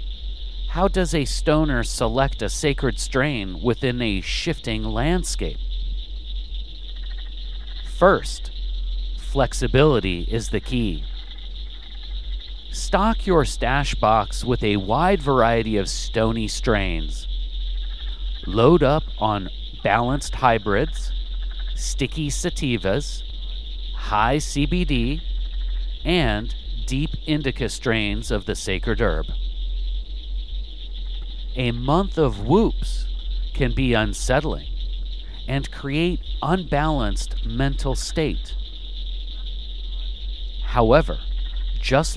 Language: English